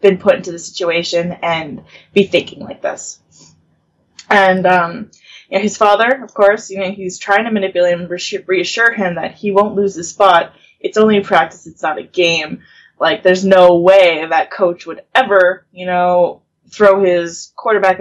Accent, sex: American, female